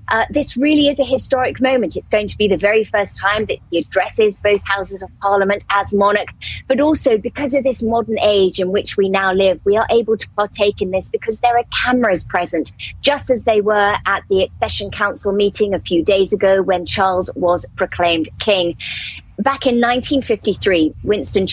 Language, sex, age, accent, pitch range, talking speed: English, female, 30-49, British, 185-220 Hz, 195 wpm